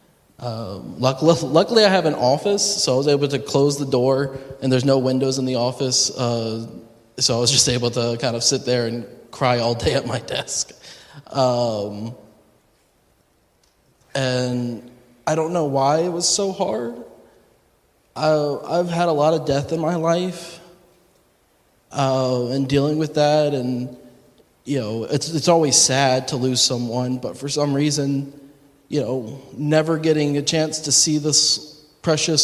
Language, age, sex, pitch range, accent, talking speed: English, 20-39, male, 125-150 Hz, American, 160 wpm